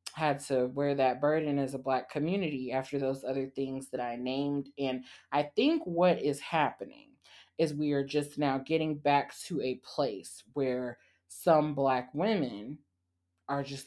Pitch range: 125-145 Hz